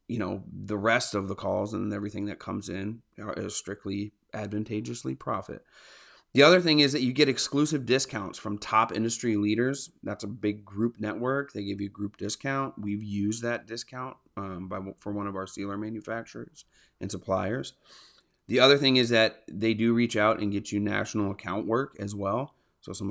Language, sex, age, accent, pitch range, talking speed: English, male, 30-49, American, 100-115 Hz, 190 wpm